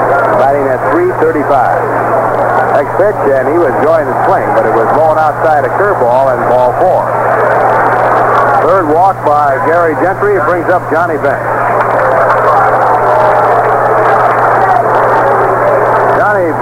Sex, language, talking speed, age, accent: male, English, 115 wpm, 60-79, American